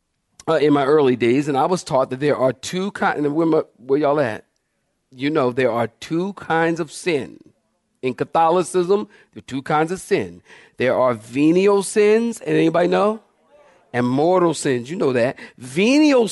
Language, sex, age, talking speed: English, male, 50-69, 175 wpm